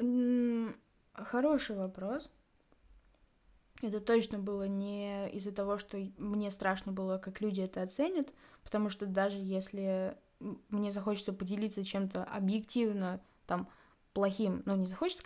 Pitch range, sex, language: 195-245 Hz, female, Russian